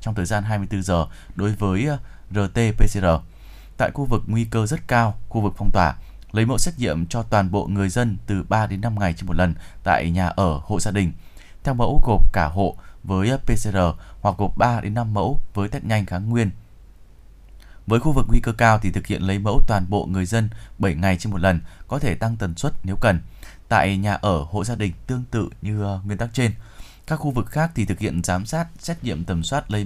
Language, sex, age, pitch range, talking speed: Vietnamese, male, 20-39, 95-115 Hz, 225 wpm